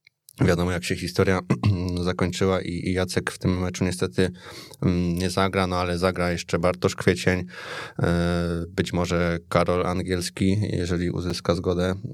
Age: 20-39